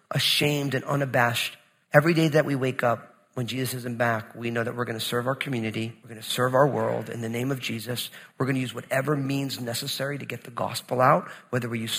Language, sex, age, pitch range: English, male, 40-59, 130-170 Hz